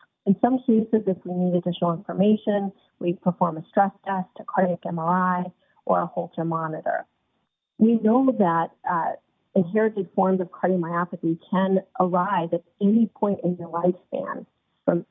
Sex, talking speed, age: female, 145 wpm, 30-49